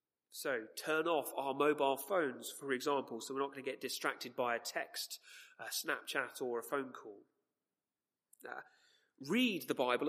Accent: British